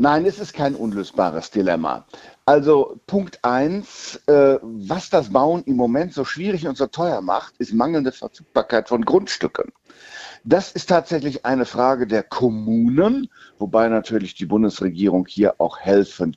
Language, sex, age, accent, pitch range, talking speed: German, male, 60-79, German, 120-170 Hz, 145 wpm